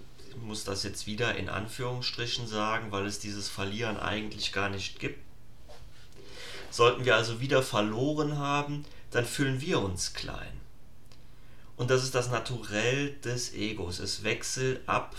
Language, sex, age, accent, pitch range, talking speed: German, male, 30-49, German, 105-130 Hz, 140 wpm